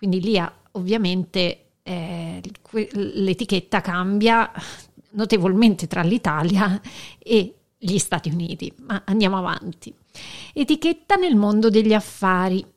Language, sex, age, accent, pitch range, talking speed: Italian, female, 50-69, native, 185-235 Hz, 100 wpm